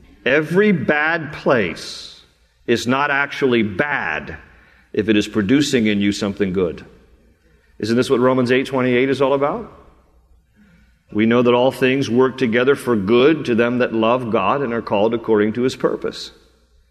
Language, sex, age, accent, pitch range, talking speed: English, male, 50-69, American, 105-140 Hz, 160 wpm